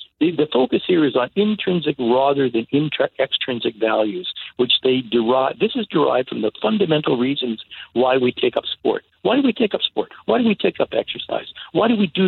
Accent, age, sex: American, 60-79, male